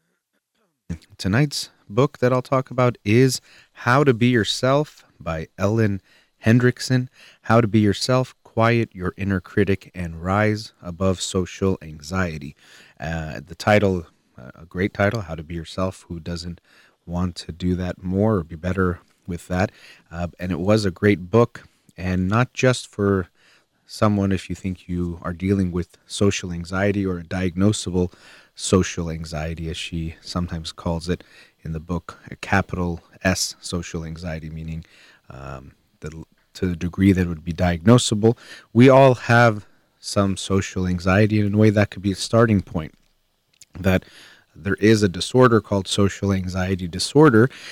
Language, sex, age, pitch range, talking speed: English, male, 30-49, 85-110 Hz, 155 wpm